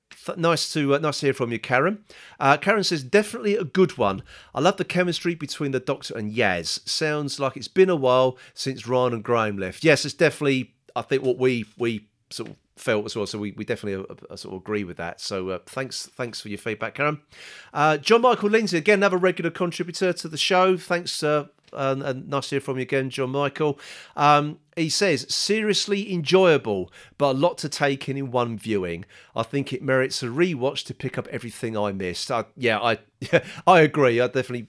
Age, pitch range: 40-59, 115-165 Hz